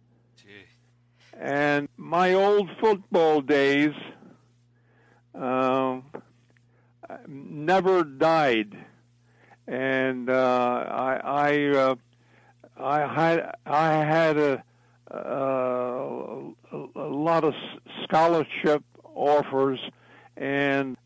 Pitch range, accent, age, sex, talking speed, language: 125-165 Hz, American, 60-79, male, 70 wpm, English